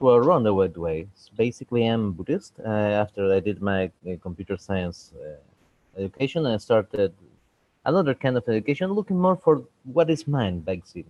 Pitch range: 95-150 Hz